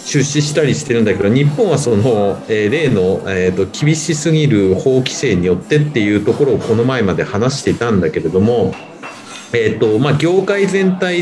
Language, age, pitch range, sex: Japanese, 40-59, 115-170 Hz, male